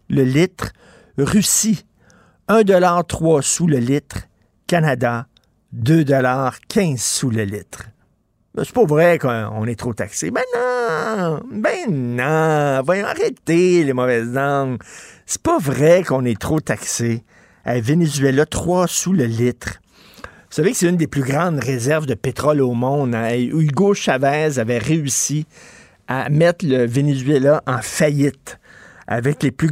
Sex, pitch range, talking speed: male, 125-170 Hz, 145 wpm